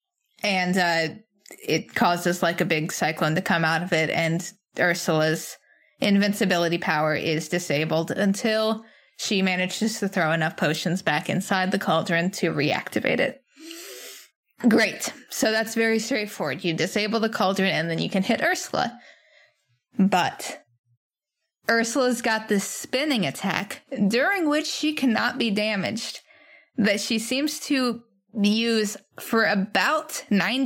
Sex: female